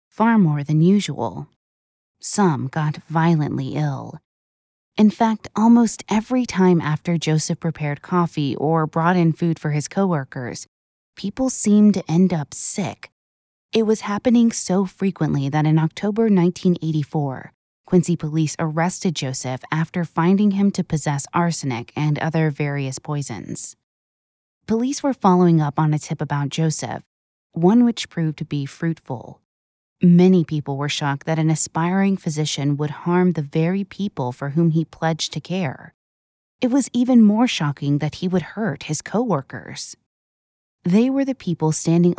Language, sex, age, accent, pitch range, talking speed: English, female, 20-39, American, 145-185 Hz, 145 wpm